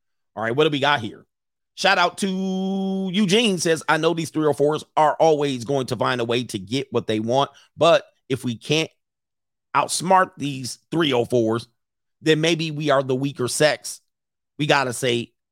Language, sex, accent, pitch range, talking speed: English, male, American, 115-155 Hz, 180 wpm